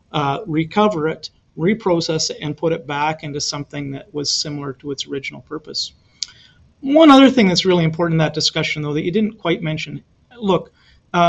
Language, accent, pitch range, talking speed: English, American, 150-190 Hz, 185 wpm